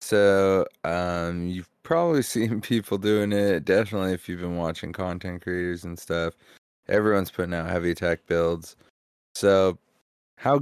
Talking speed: 140 wpm